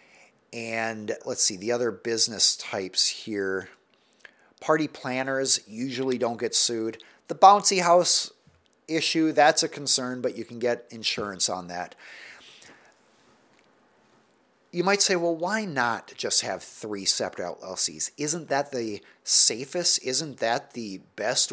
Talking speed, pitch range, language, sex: 130 wpm, 115-170 Hz, English, male